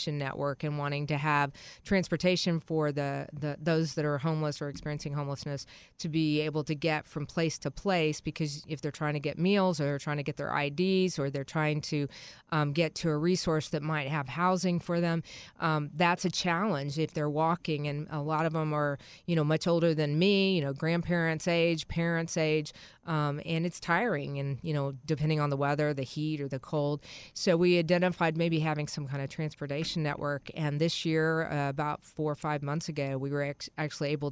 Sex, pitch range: female, 145-165 Hz